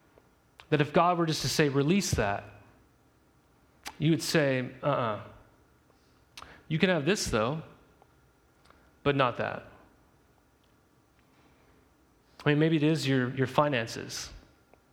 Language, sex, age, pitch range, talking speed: English, male, 30-49, 130-170 Hz, 120 wpm